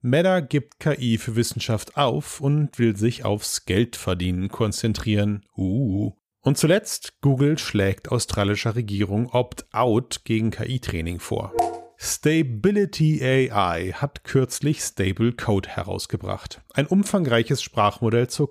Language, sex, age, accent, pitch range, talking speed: German, male, 40-59, German, 105-145 Hz, 110 wpm